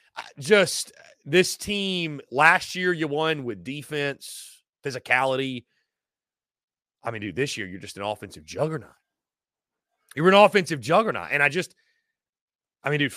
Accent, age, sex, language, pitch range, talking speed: American, 30-49, male, English, 130-205 Hz, 135 wpm